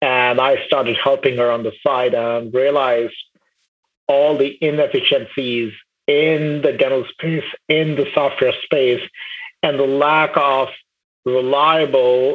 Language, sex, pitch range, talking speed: English, male, 125-145 Hz, 125 wpm